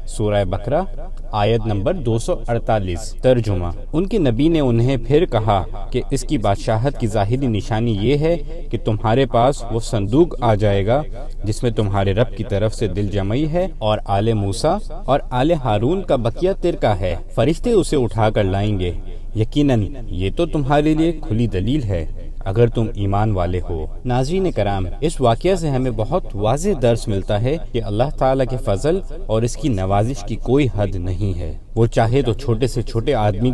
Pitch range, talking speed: 105-135 Hz, 180 wpm